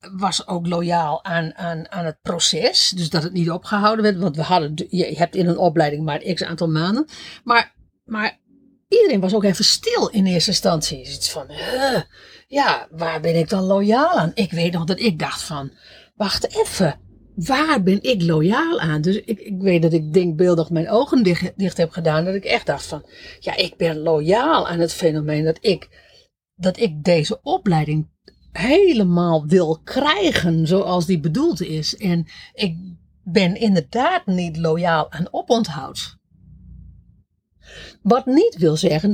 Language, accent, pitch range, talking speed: Dutch, Dutch, 165-215 Hz, 170 wpm